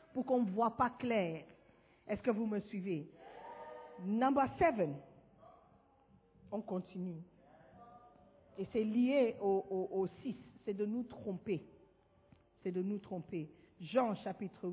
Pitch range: 195-320 Hz